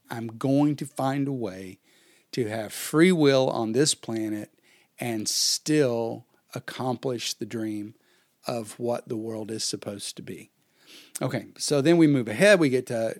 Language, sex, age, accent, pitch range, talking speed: English, male, 40-59, American, 120-150 Hz, 160 wpm